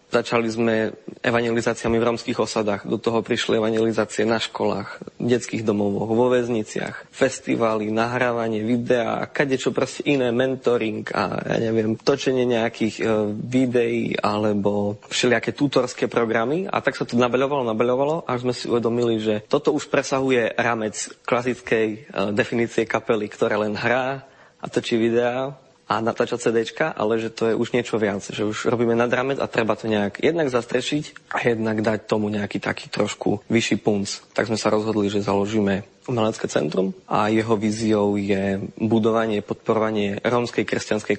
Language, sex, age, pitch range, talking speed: Slovak, male, 20-39, 105-125 Hz, 155 wpm